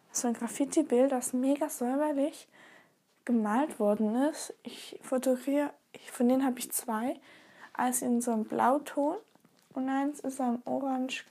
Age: 10-29